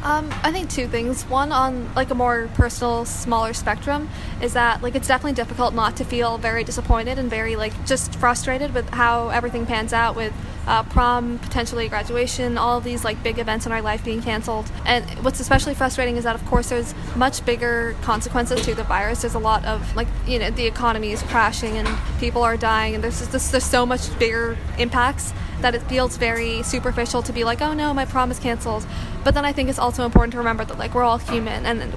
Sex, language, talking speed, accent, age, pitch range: female, English, 215 wpm, American, 20-39, 230-245 Hz